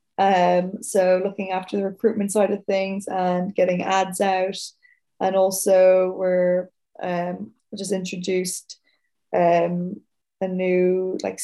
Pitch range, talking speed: 180-190 Hz, 120 wpm